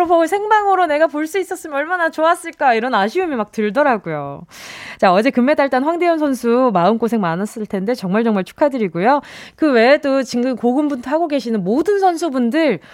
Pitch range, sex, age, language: 210-315 Hz, female, 20-39, Korean